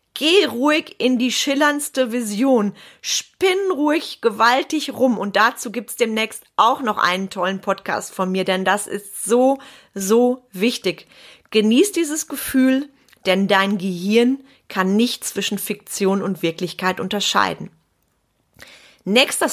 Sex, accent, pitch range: female, German, 200-265 Hz